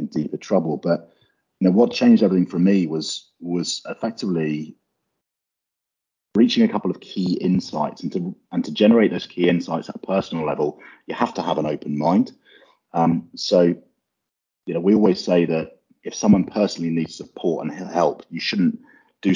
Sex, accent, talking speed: male, British, 175 wpm